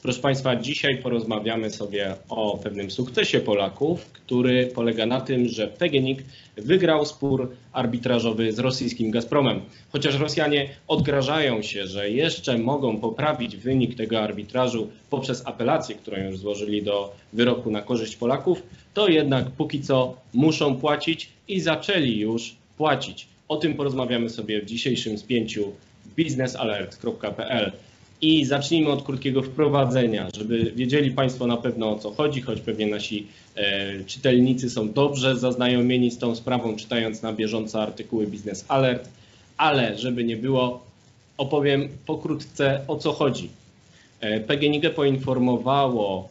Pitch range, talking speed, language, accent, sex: 110-140 Hz, 130 wpm, Polish, native, male